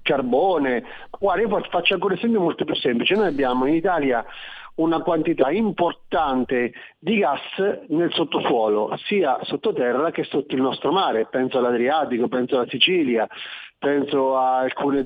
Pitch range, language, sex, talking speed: 130-170 Hz, Italian, male, 140 wpm